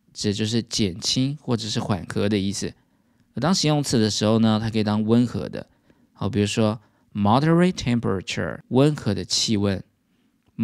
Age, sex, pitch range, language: 20-39, male, 105-120 Hz, Chinese